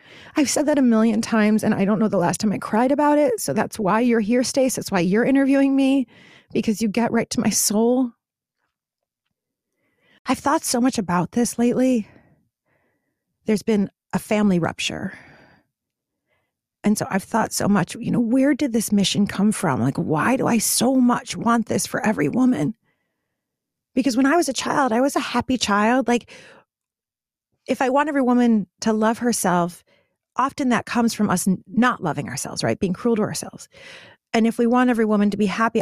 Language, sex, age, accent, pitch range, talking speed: English, female, 40-59, American, 200-250 Hz, 190 wpm